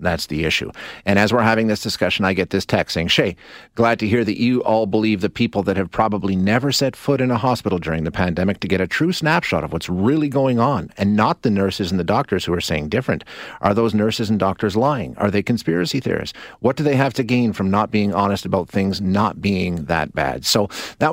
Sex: male